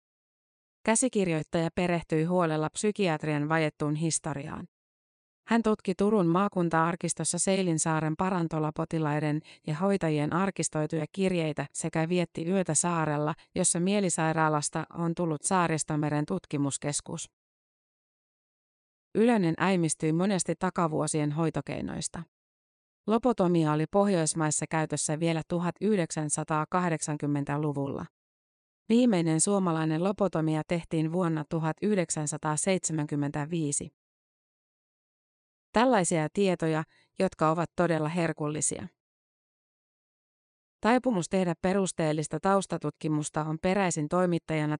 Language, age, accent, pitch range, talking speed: Finnish, 30-49, native, 155-185 Hz, 75 wpm